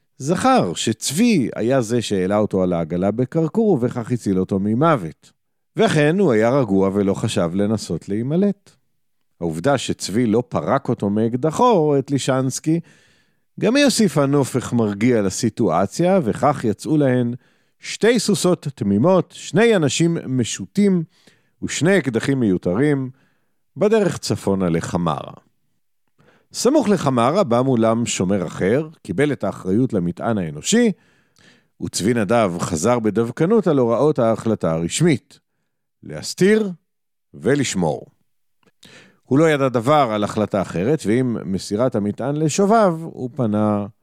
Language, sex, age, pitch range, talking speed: Hebrew, male, 50-69, 110-165 Hz, 115 wpm